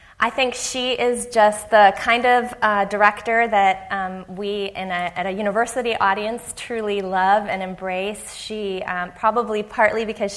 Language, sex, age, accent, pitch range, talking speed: English, female, 20-39, American, 185-215 Hz, 160 wpm